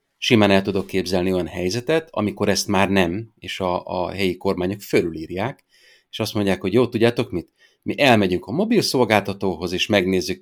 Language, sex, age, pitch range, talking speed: Hungarian, male, 30-49, 90-105 Hz, 175 wpm